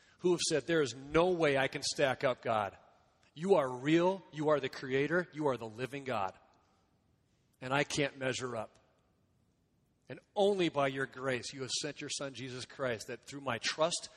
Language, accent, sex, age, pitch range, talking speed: English, American, male, 40-59, 120-150 Hz, 190 wpm